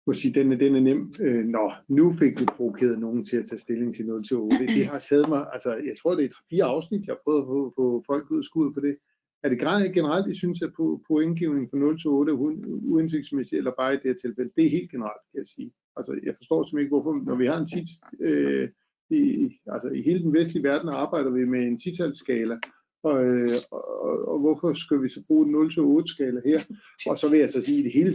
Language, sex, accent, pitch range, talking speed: Danish, male, native, 130-175 Hz, 240 wpm